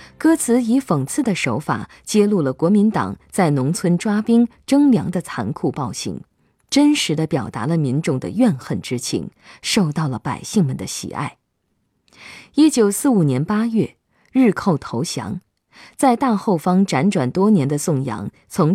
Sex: female